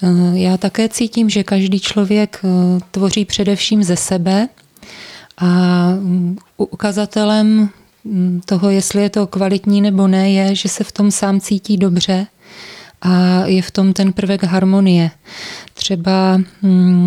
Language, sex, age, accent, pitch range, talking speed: Czech, female, 20-39, native, 185-200 Hz, 125 wpm